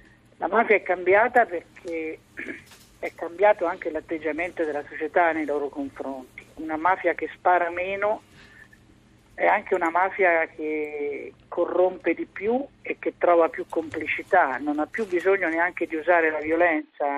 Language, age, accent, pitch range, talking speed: Italian, 50-69, native, 150-195 Hz, 145 wpm